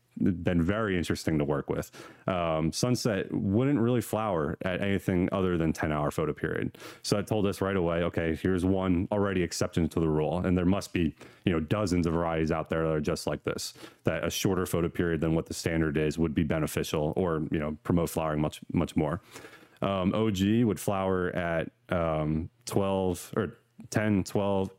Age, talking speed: 30-49, 195 wpm